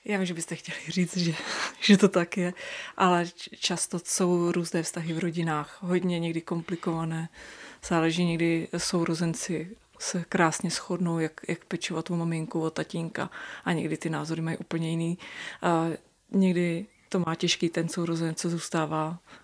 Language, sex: Czech, female